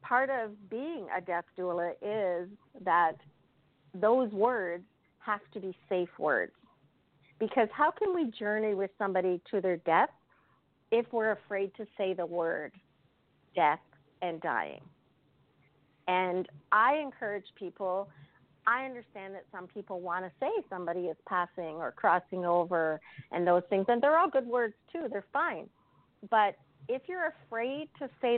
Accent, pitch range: American, 175-220 Hz